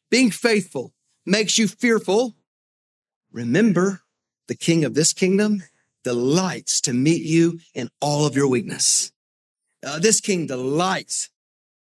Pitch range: 125-185 Hz